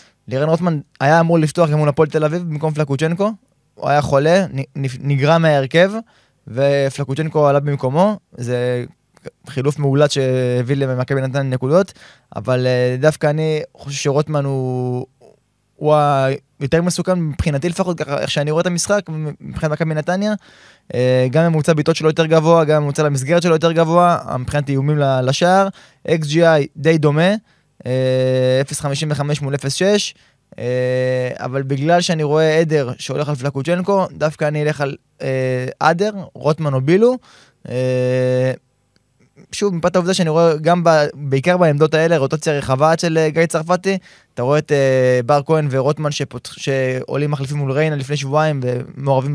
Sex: male